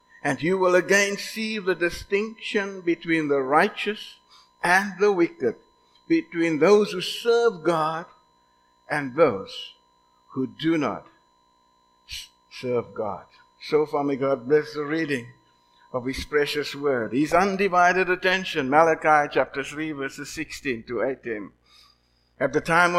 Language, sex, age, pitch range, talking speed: English, male, 60-79, 135-195 Hz, 130 wpm